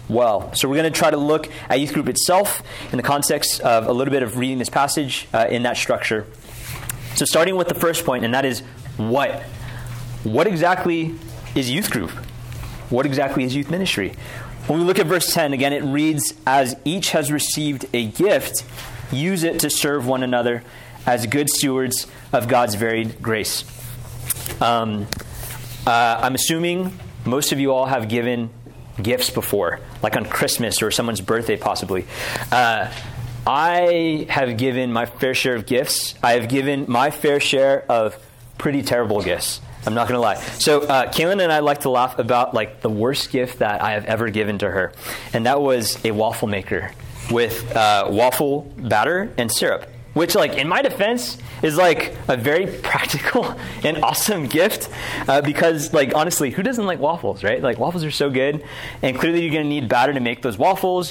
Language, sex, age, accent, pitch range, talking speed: English, male, 30-49, American, 120-150 Hz, 185 wpm